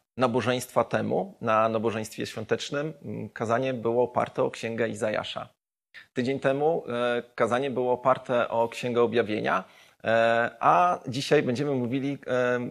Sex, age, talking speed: male, 30-49, 110 wpm